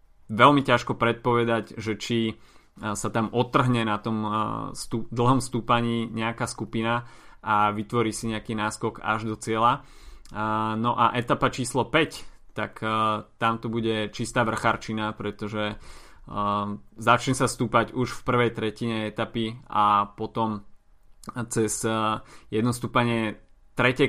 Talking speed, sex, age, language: 120 wpm, male, 20-39, Slovak